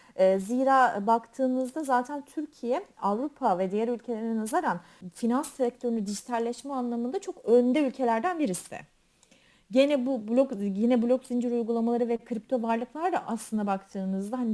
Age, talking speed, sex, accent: 40-59, 130 wpm, female, native